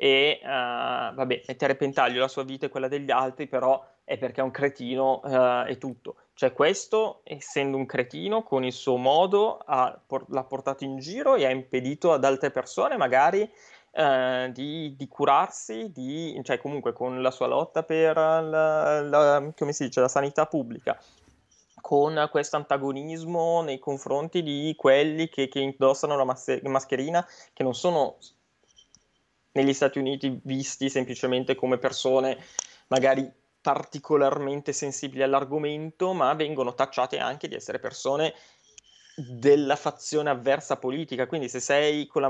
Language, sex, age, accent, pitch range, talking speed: Italian, male, 20-39, native, 130-155 Hz, 135 wpm